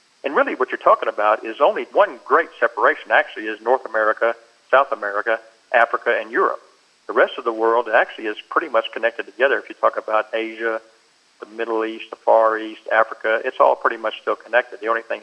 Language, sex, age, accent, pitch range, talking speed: English, male, 50-69, American, 110-125 Hz, 205 wpm